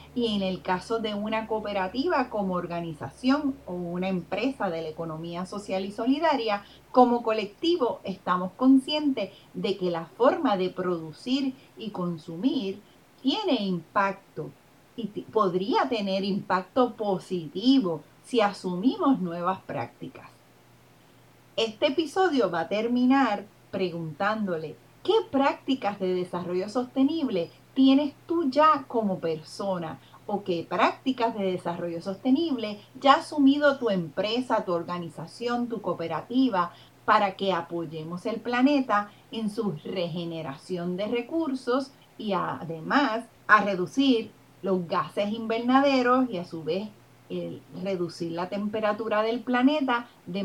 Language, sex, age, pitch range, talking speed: Spanish, female, 30-49, 180-250 Hz, 120 wpm